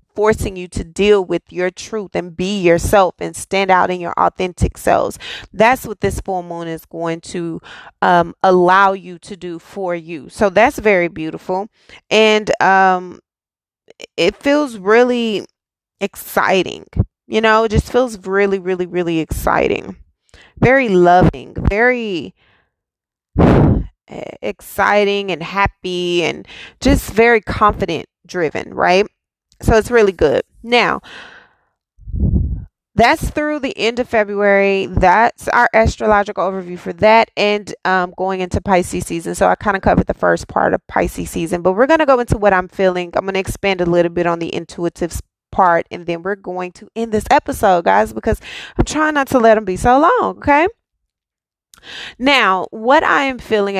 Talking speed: 160 wpm